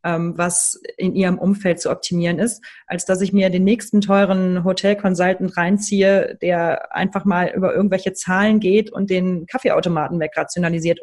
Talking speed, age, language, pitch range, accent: 145 wpm, 30-49, German, 185-215 Hz, German